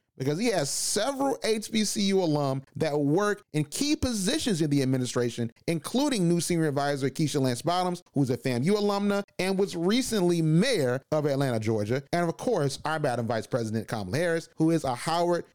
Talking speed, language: 180 wpm, English